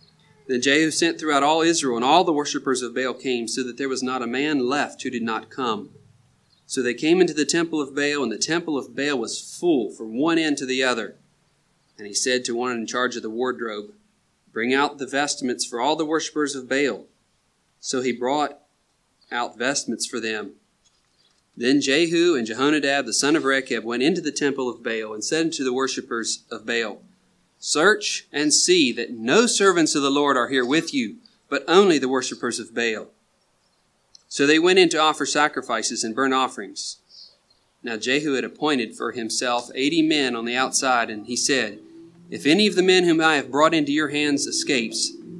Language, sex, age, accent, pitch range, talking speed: English, male, 30-49, American, 125-160 Hz, 200 wpm